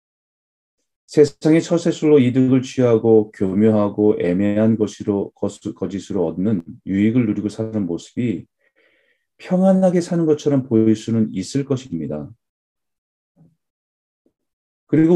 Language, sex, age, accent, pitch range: Korean, male, 40-59, native, 95-135 Hz